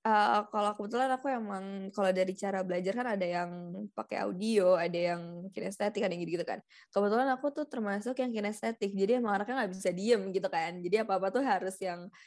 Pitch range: 185-230 Hz